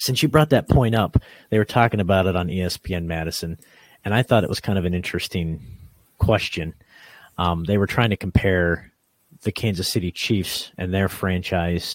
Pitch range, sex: 90-115 Hz, male